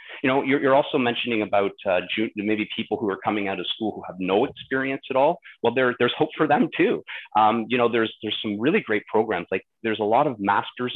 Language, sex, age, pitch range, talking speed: English, male, 30-49, 95-115 Hz, 240 wpm